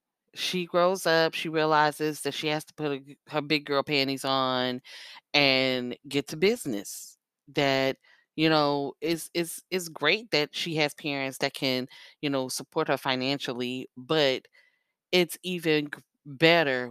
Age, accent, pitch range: 10-29, American, 135-165 Hz